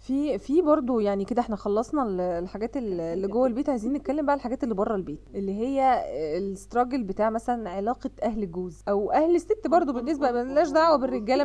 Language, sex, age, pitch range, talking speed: Arabic, female, 20-39, 195-280 Hz, 185 wpm